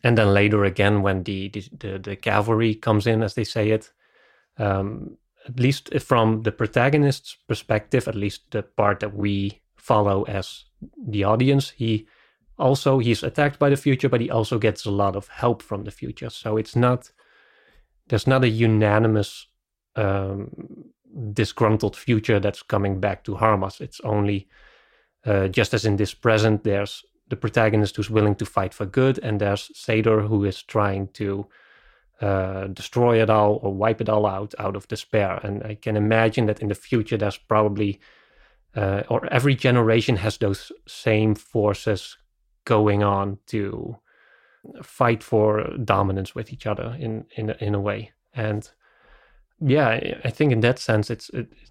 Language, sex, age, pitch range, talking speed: English, male, 30-49, 100-115 Hz, 165 wpm